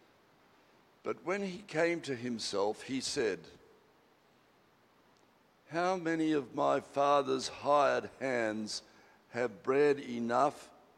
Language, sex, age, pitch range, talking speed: English, male, 60-79, 110-145 Hz, 100 wpm